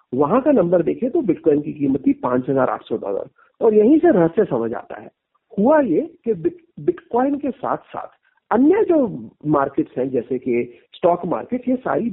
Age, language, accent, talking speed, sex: 50-69, Hindi, native, 190 wpm, male